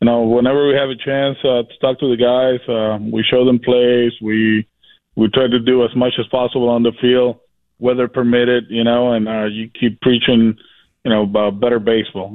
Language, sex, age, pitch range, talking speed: English, male, 20-39, 110-125 Hz, 215 wpm